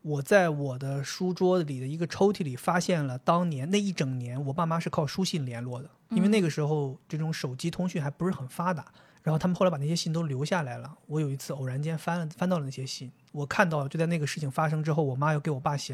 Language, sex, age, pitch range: Chinese, male, 30-49, 140-175 Hz